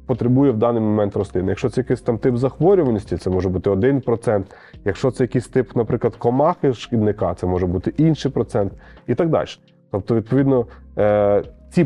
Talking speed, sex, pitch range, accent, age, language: 165 wpm, male, 115-145 Hz, native, 30-49, Ukrainian